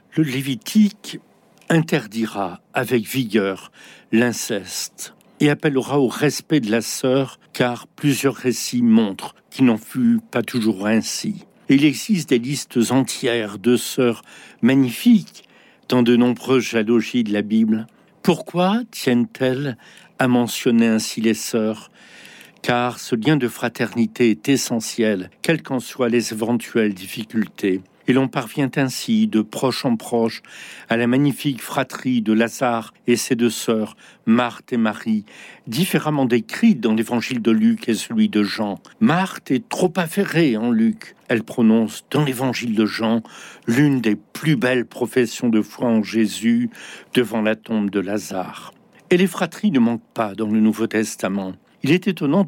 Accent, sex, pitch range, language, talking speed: French, male, 110-155 Hz, French, 150 wpm